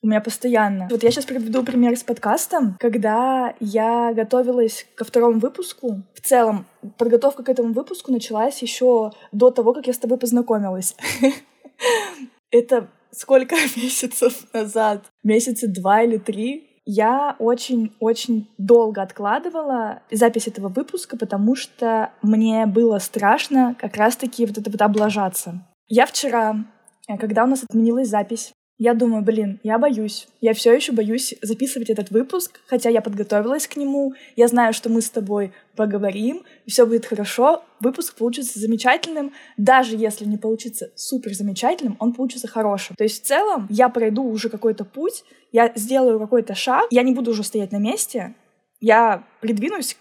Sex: female